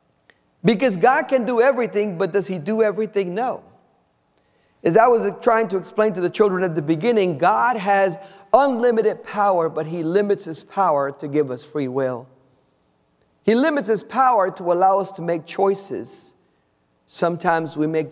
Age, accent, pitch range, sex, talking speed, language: 50-69, American, 150-245 Hz, male, 165 wpm, English